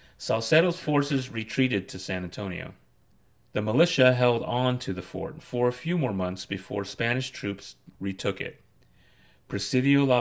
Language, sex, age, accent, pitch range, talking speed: English, male, 30-49, American, 95-130 Hz, 145 wpm